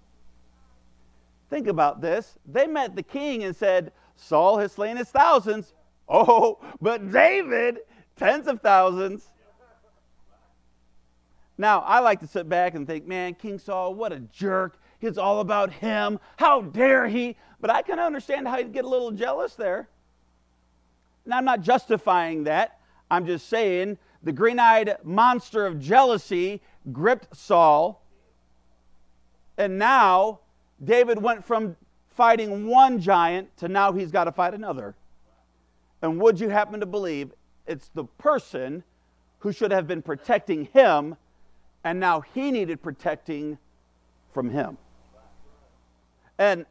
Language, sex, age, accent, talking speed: English, male, 50-69, American, 135 wpm